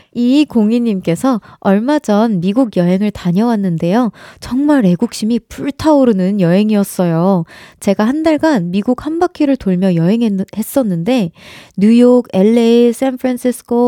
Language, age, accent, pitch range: Korean, 20-39, native, 190-255 Hz